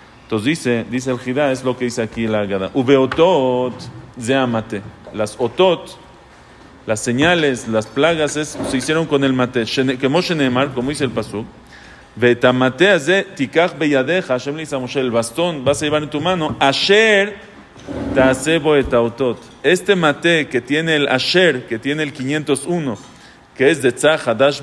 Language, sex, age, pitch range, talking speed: English, male, 40-59, 120-155 Hz, 140 wpm